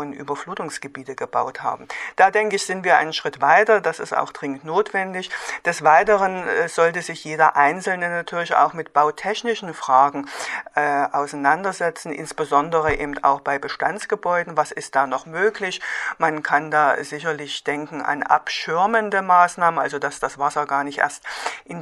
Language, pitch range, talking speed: German, 145-175 Hz, 150 wpm